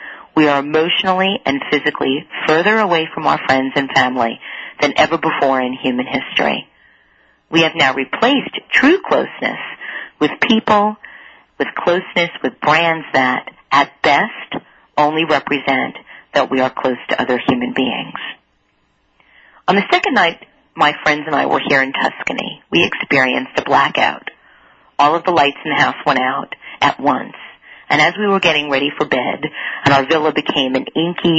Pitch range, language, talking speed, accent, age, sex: 140-165 Hz, English, 160 wpm, American, 40-59, female